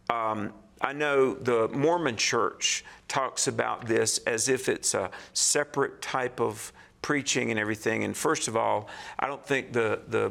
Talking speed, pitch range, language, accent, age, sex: 165 wpm, 110-145 Hz, English, American, 50-69, male